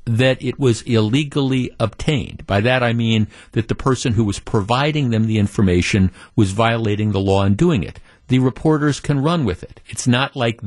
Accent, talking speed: American, 190 wpm